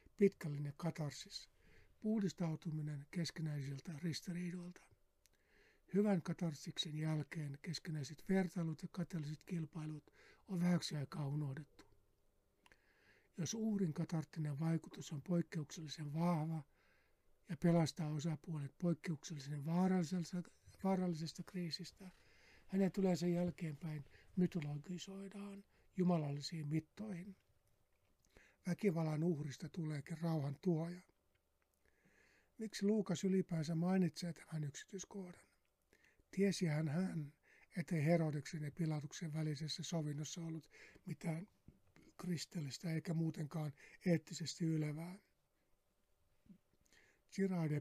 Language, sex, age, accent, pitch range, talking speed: Finnish, male, 60-79, native, 150-175 Hz, 80 wpm